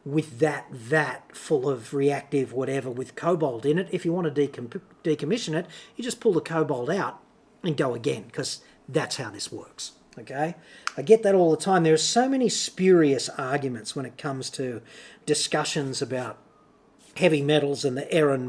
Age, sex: 40-59, male